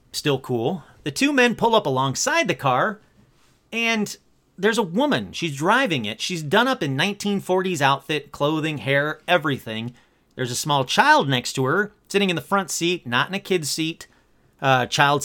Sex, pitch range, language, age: male, 135-205 Hz, English, 30-49